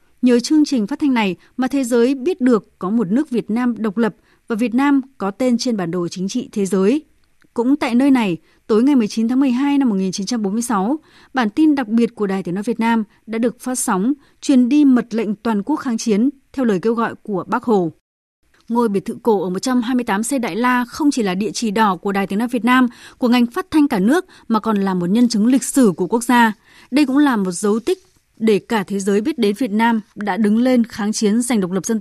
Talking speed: 245 wpm